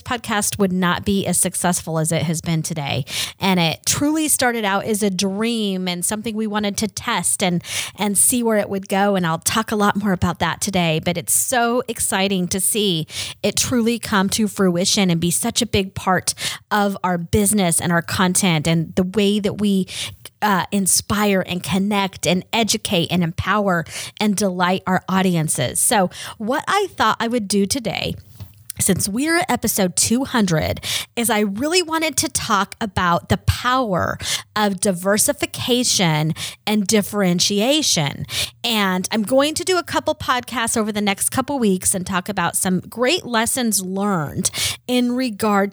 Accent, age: American, 30-49